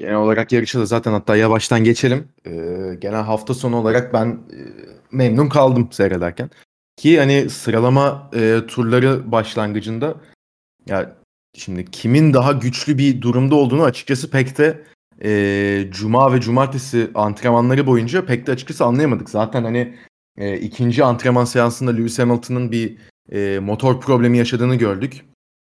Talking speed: 140 wpm